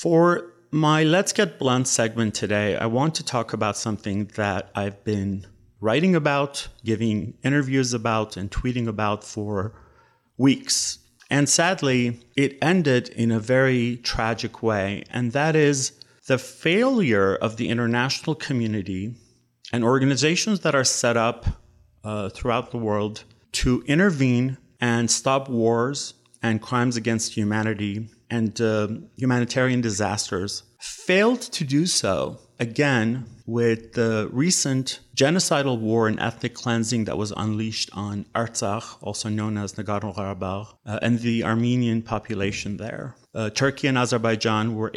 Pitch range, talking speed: 105-130 Hz, 135 wpm